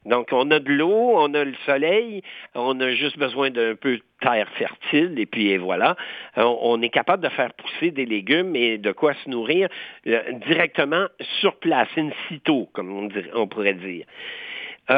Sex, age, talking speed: male, 60-79, 175 wpm